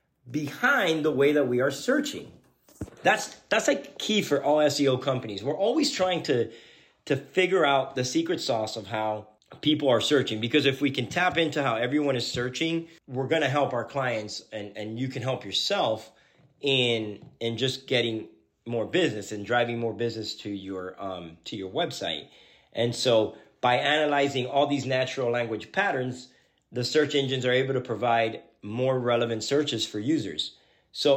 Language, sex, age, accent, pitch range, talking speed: English, male, 30-49, American, 115-145 Hz, 175 wpm